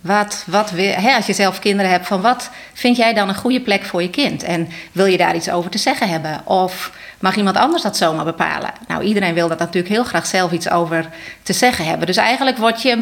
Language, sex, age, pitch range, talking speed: Dutch, female, 30-49, 185-230 Hz, 230 wpm